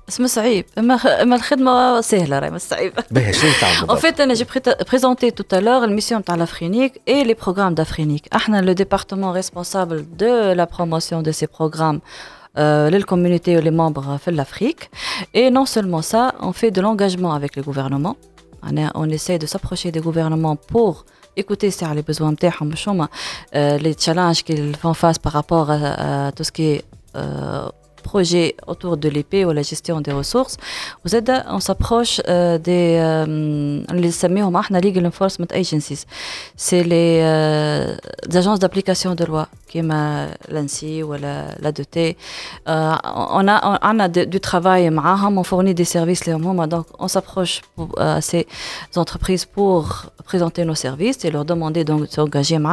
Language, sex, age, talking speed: Arabic, female, 20-39, 145 wpm